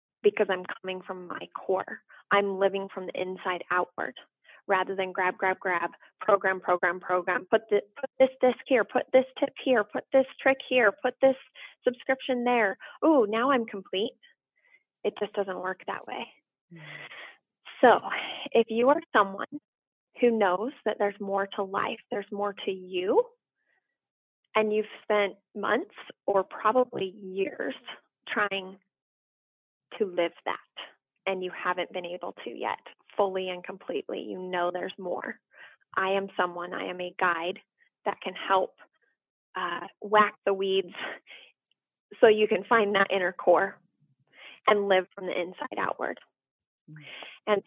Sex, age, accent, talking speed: female, 20-39, American, 145 wpm